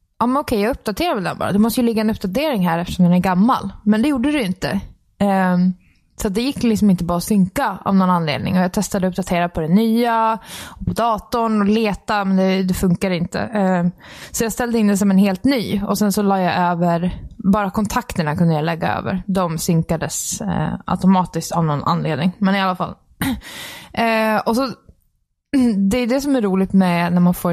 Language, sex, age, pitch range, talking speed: Swedish, female, 20-39, 180-210 Hz, 205 wpm